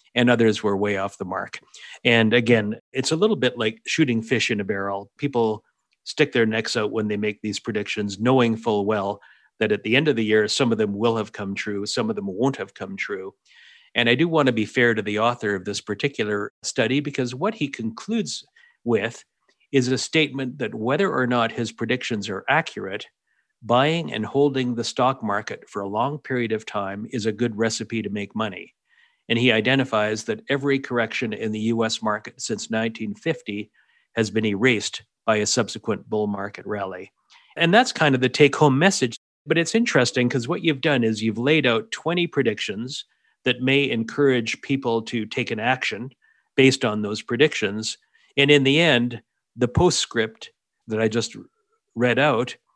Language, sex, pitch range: English, male, 110-135 Hz